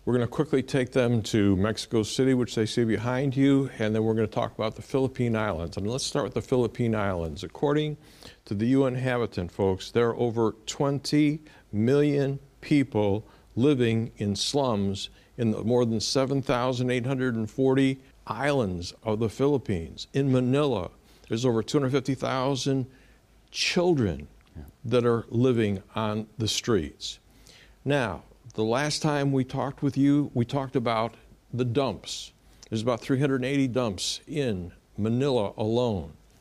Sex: male